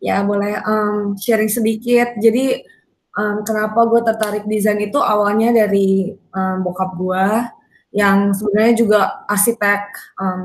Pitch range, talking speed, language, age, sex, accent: 200-230 Hz, 125 wpm, Indonesian, 20-39, female, native